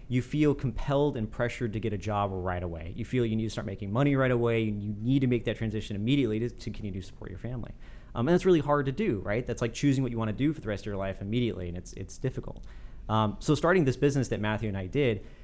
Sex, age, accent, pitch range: male, 30-49, American, 105-135 Hz